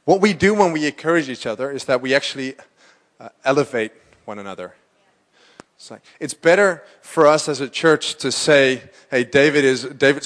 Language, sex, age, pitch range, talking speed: English, male, 30-49, 145-185 Hz, 180 wpm